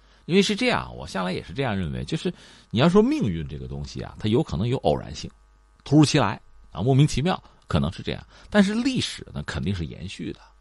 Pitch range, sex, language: 80-125 Hz, male, Chinese